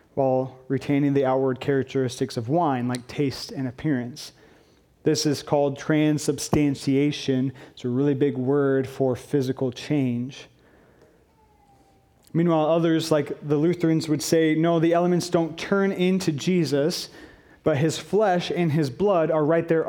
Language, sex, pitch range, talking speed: English, male, 135-160 Hz, 140 wpm